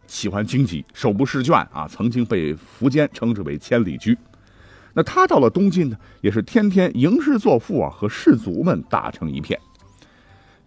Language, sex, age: Chinese, male, 50-69